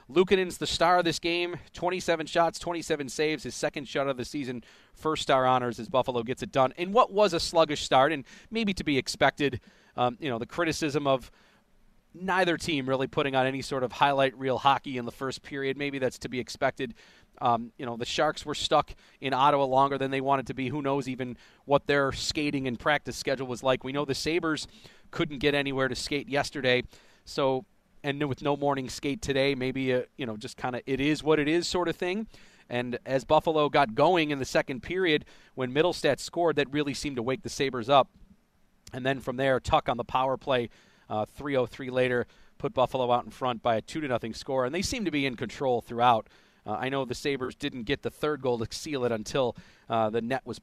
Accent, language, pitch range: American, English, 125-150 Hz